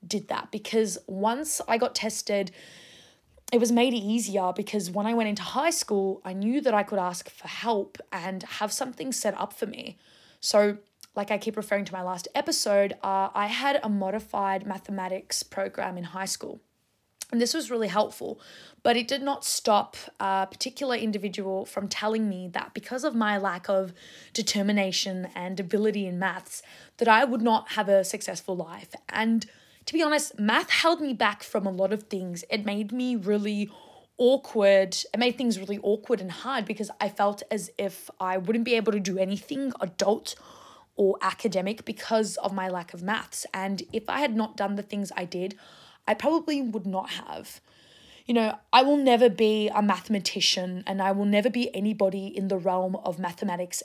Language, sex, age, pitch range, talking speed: English, female, 20-39, 190-230 Hz, 185 wpm